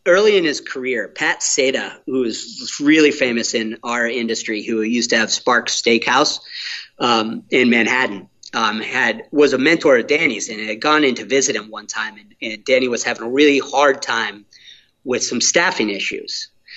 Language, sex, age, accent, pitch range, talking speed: English, male, 40-59, American, 115-180 Hz, 185 wpm